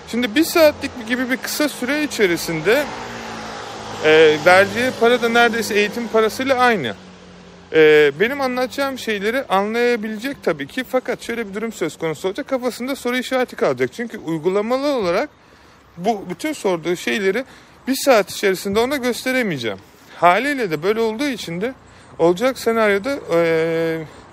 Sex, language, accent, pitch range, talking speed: male, Turkish, native, 175-245 Hz, 135 wpm